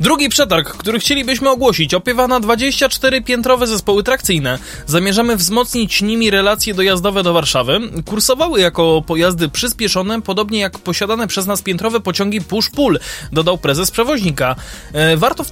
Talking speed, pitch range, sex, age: 130 wpm, 185-250 Hz, male, 20-39